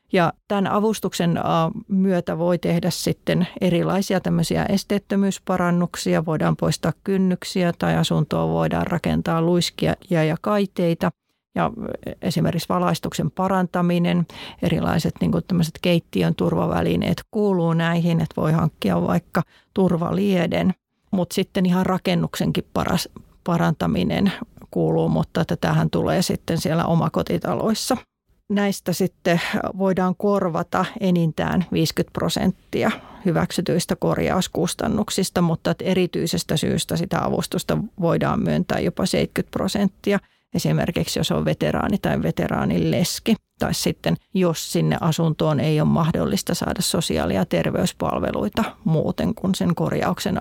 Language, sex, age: Finnish, female, 40-59